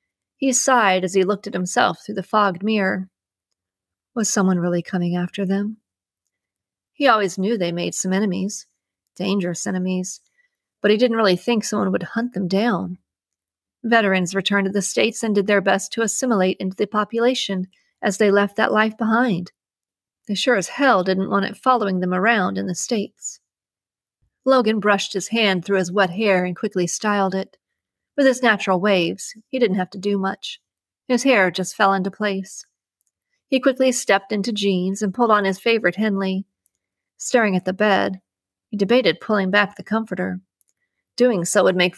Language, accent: English, American